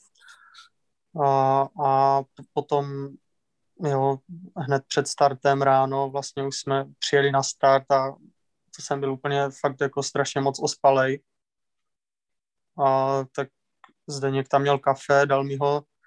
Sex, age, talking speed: male, 20-39, 125 wpm